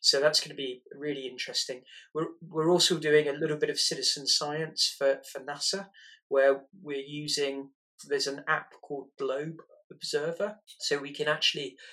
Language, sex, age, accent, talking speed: English, male, 30-49, British, 165 wpm